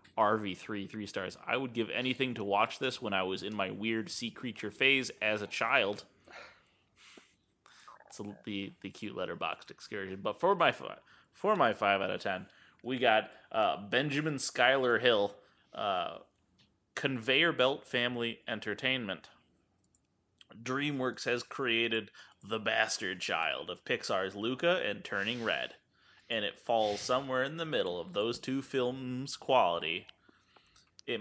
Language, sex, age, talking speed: English, male, 20-39, 140 wpm